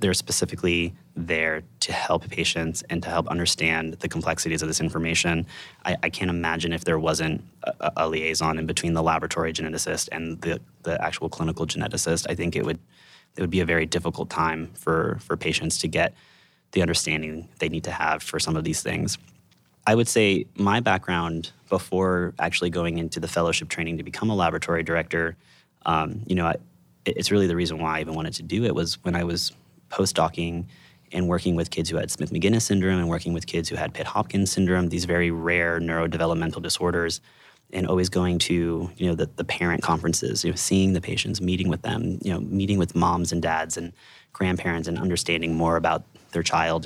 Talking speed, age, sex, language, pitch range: 200 wpm, 20-39, male, English, 80-90 Hz